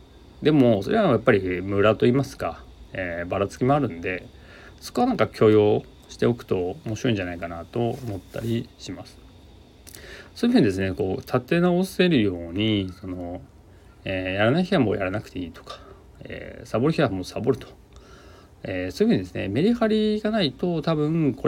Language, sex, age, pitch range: Japanese, male, 40-59, 90-135 Hz